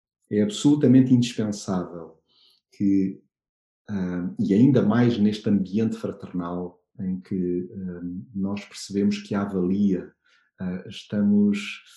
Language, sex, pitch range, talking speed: Portuguese, male, 95-115 Hz, 90 wpm